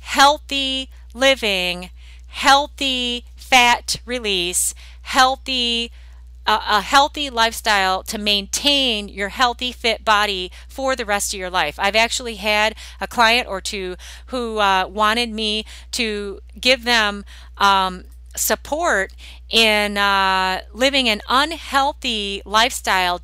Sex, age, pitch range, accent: female, 30-49, 200-255 Hz, American